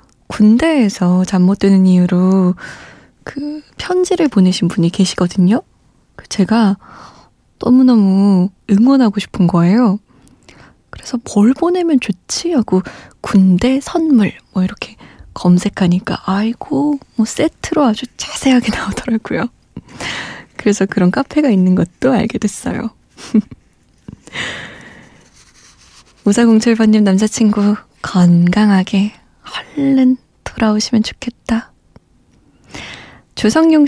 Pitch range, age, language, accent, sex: 190-260 Hz, 20-39, Korean, native, female